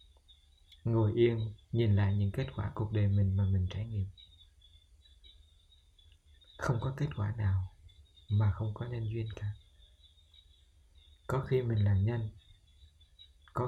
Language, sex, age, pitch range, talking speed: Vietnamese, male, 20-39, 80-110 Hz, 135 wpm